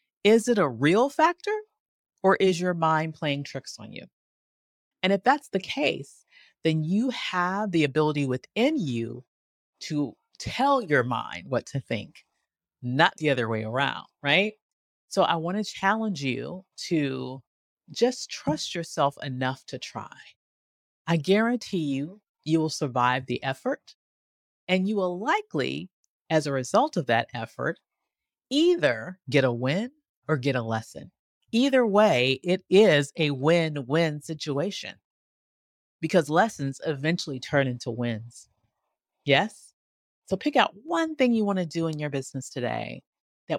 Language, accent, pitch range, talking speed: English, American, 135-205 Hz, 145 wpm